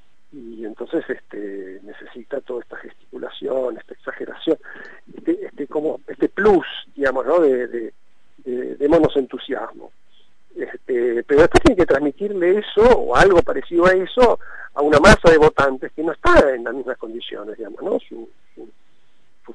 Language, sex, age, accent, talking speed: Spanish, male, 50-69, Argentinian, 155 wpm